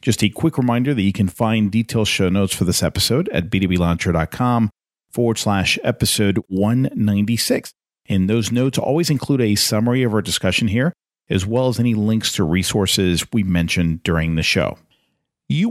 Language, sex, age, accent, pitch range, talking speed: English, male, 40-59, American, 95-125 Hz, 170 wpm